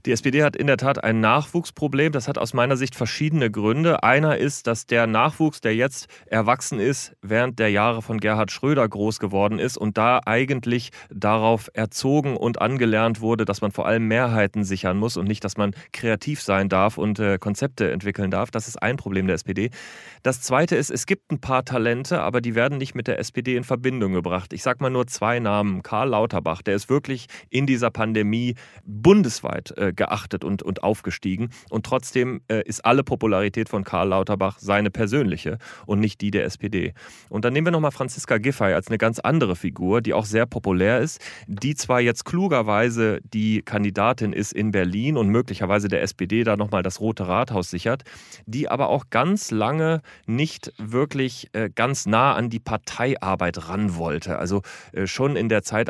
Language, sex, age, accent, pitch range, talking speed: German, male, 30-49, German, 105-130 Hz, 190 wpm